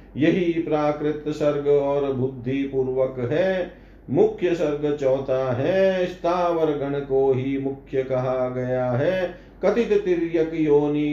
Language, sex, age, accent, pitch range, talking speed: Hindi, male, 50-69, native, 140-180 Hz, 120 wpm